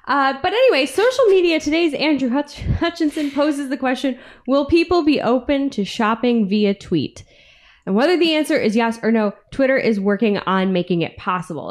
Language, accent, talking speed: English, American, 175 wpm